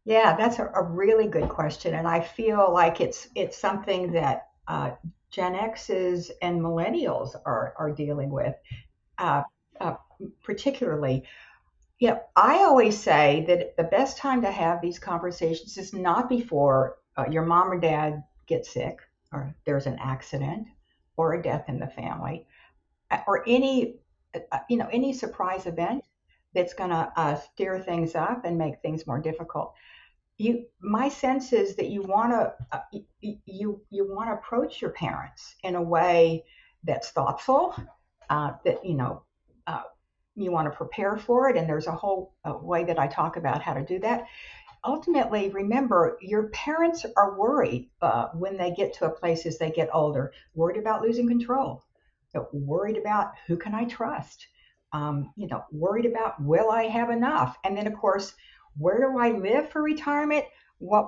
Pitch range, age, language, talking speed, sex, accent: 165-235 Hz, 60-79, English, 170 wpm, female, American